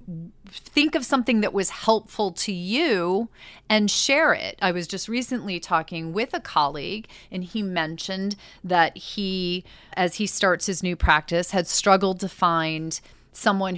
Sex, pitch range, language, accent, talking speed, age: female, 165-215 Hz, English, American, 155 wpm, 30-49